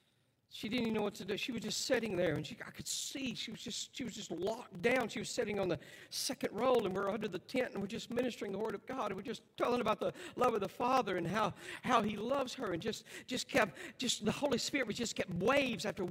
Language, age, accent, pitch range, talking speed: English, 60-79, American, 225-295 Hz, 270 wpm